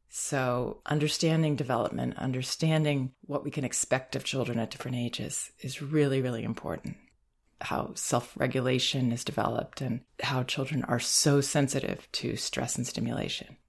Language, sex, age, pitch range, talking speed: English, female, 30-49, 125-145 Hz, 135 wpm